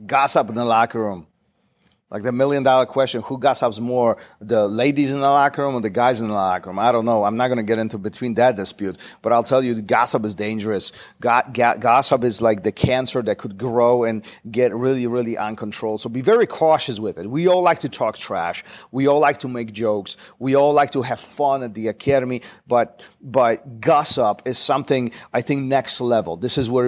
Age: 40-59